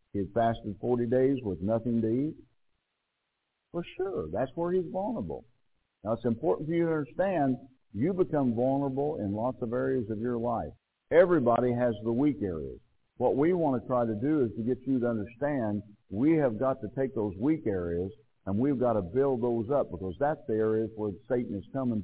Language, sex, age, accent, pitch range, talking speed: English, male, 60-79, American, 115-155 Hz, 200 wpm